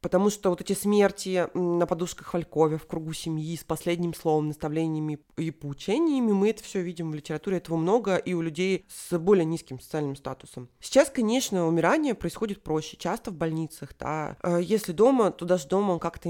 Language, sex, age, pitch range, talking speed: Russian, female, 20-39, 155-195 Hz, 180 wpm